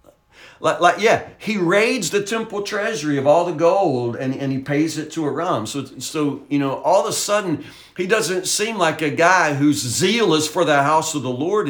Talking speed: 210 wpm